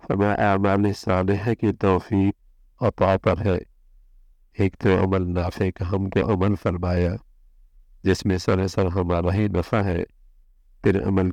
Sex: male